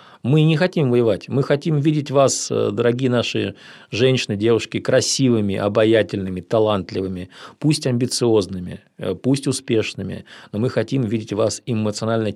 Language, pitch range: Russian, 105-130 Hz